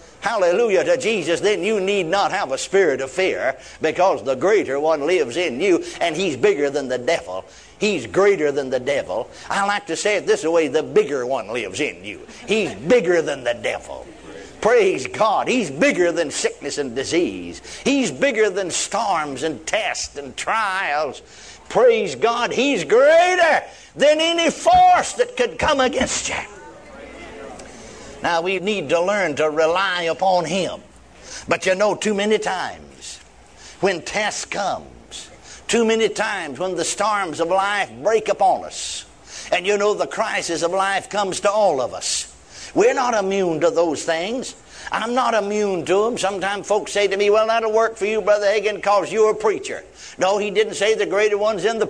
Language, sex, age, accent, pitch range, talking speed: English, male, 60-79, American, 170-230 Hz, 175 wpm